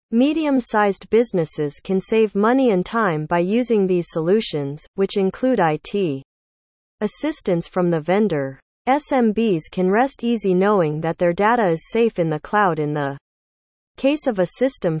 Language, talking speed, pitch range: English, 150 wpm, 160-230 Hz